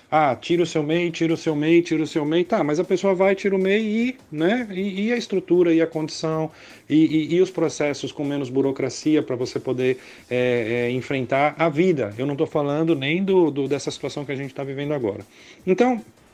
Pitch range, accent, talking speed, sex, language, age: 130-175 Hz, Brazilian, 230 wpm, male, Portuguese, 40-59